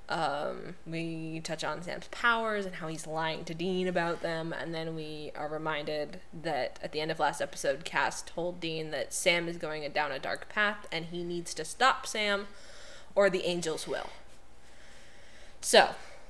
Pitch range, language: 165-195 Hz, English